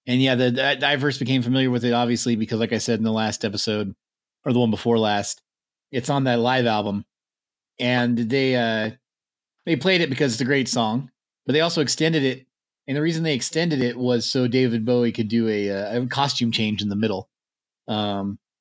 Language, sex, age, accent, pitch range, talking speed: English, male, 30-49, American, 115-135 Hz, 205 wpm